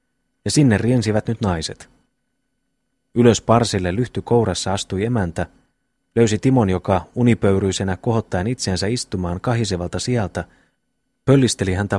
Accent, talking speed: native, 110 wpm